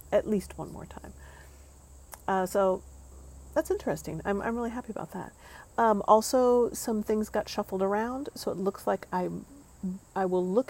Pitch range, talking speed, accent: 160-200 Hz, 170 wpm, American